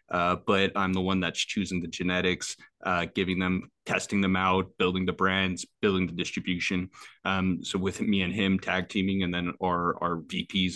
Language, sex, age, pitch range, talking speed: English, male, 20-39, 90-105 Hz, 190 wpm